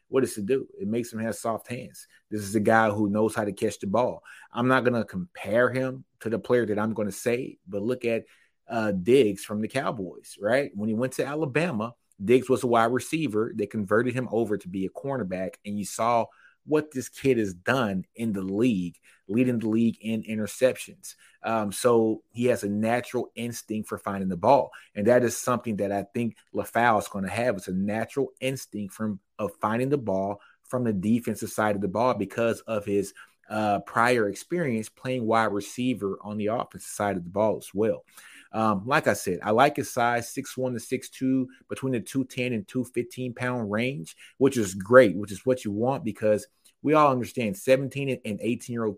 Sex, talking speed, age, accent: male, 205 wpm, 30-49, American